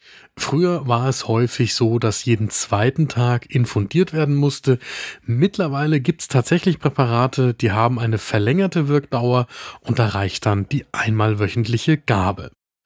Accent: German